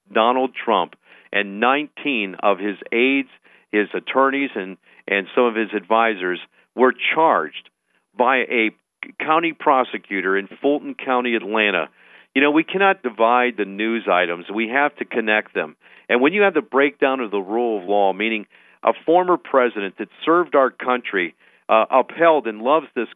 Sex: male